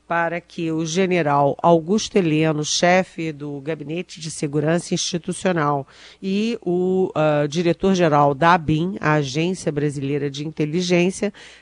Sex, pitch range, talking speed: female, 155-185 Hz, 115 wpm